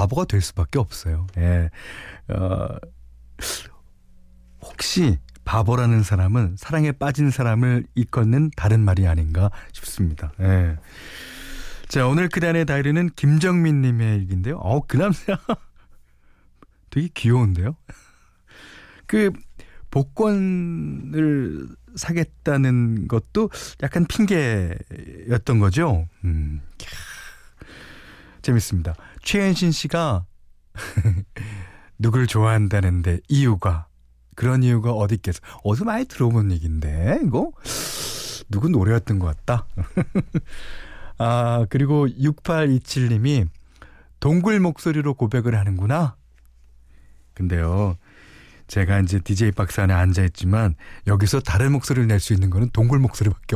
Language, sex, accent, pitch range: Korean, male, native, 90-135 Hz